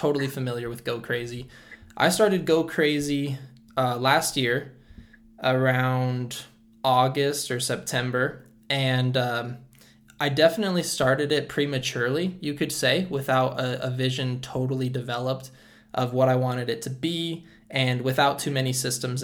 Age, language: 10-29, English